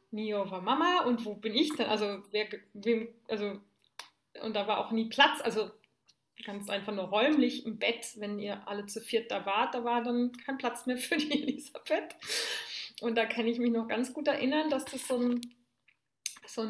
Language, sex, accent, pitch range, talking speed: German, female, German, 220-255 Hz, 180 wpm